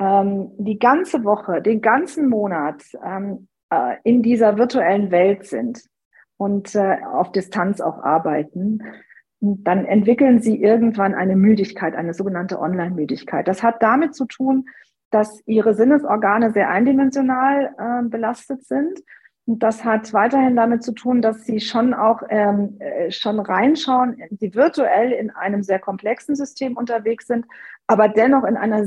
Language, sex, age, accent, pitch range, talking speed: German, female, 40-59, German, 200-245 Hz, 145 wpm